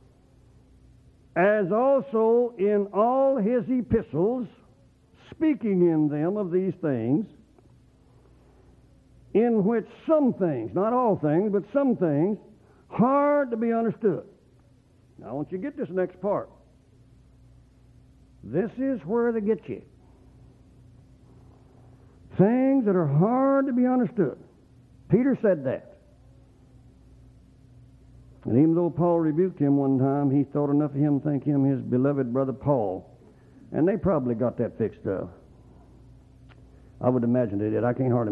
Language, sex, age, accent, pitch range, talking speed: English, male, 60-79, American, 125-200 Hz, 135 wpm